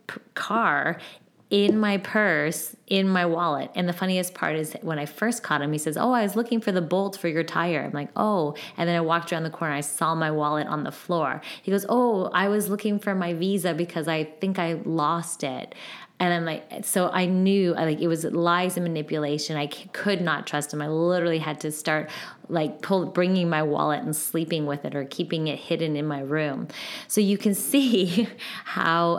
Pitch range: 155-190 Hz